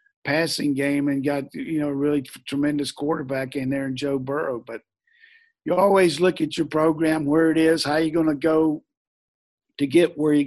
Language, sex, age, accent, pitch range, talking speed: English, male, 50-69, American, 135-160 Hz, 190 wpm